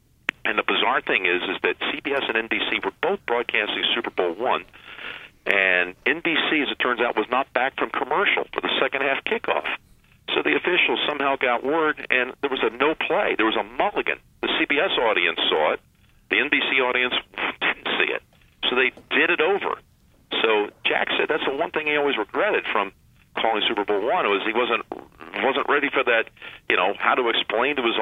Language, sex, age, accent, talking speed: English, male, 50-69, American, 195 wpm